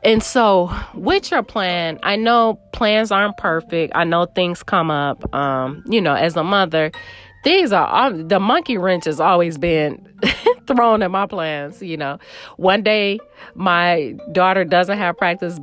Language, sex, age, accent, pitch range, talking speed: English, female, 30-49, American, 165-205 Hz, 165 wpm